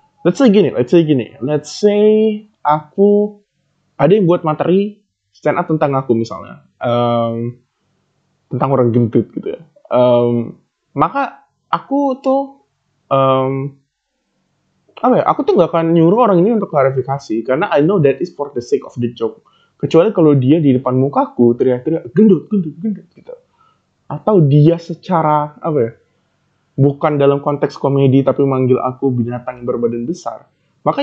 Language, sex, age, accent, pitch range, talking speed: Indonesian, male, 20-39, native, 125-170 Hz, 150 wpm